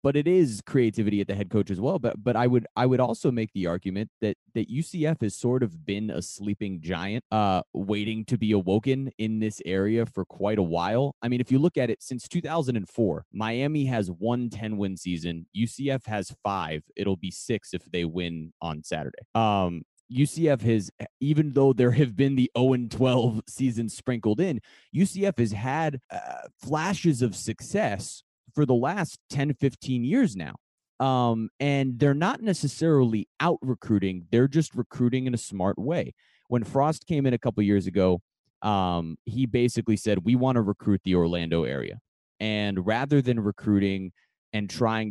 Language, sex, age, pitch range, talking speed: English, male, 30-49, 100-130 Hz, 180 wpm